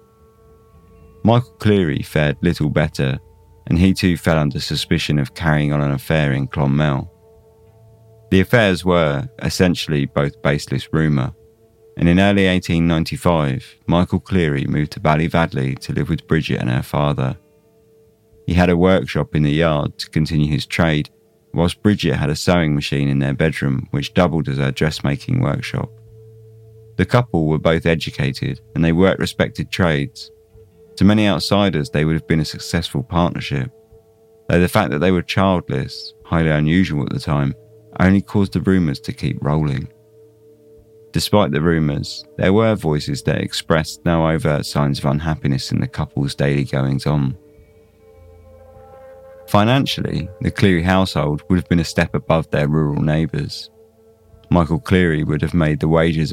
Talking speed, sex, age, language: 155 wpm, male, 30-49, English